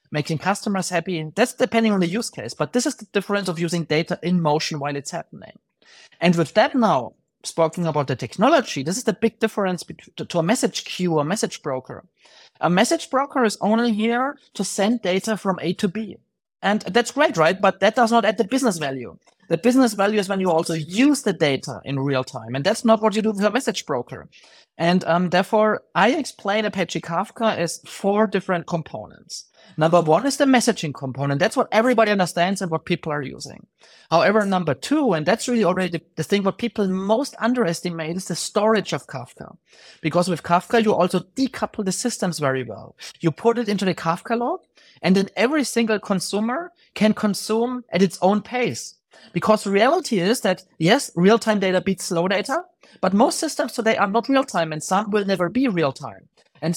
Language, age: English, 30-49